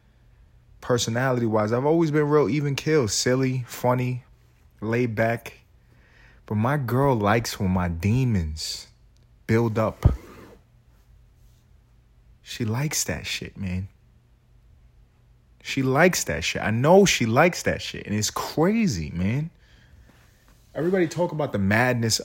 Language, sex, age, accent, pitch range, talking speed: English, male, 30-49, American, 100-130 Hz, 120 wpm